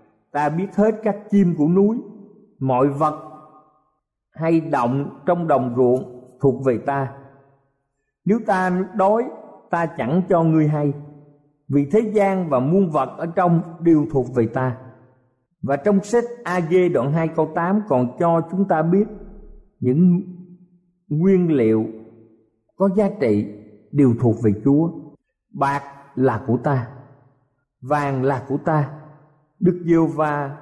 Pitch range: 130-185 Hz